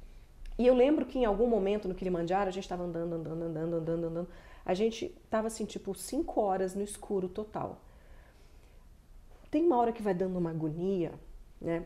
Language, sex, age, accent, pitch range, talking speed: Portuguese, female, 40-59, Brazilian, 185-255 Hz, 185 wpm